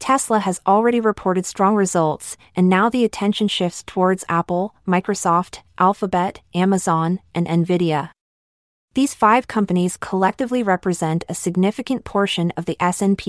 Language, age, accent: English, 30-49, American